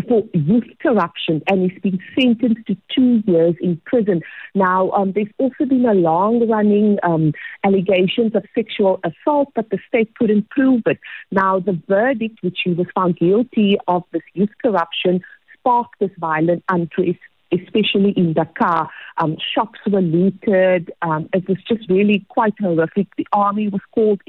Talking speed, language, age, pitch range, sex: 160 wpm, English, 50-69, 180-235 Hz, female